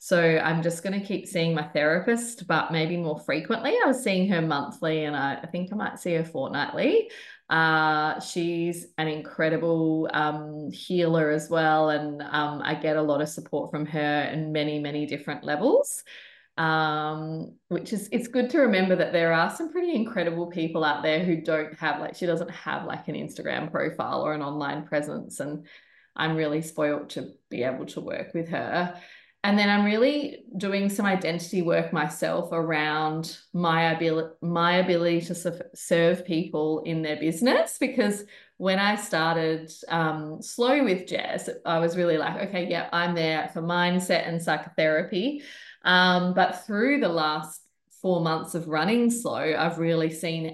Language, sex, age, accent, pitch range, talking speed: English, female, 20-39, Australian, 155-180 Hz, 170 wpm